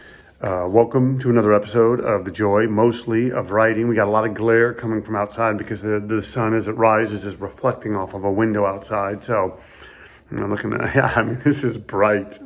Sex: male